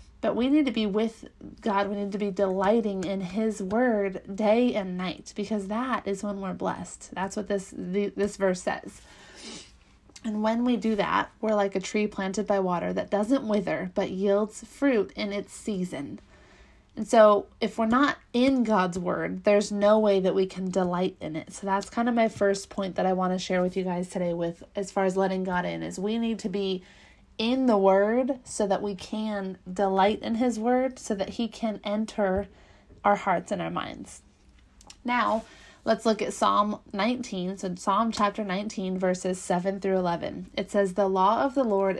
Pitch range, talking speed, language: 190-220 Hz, 195 wpm, English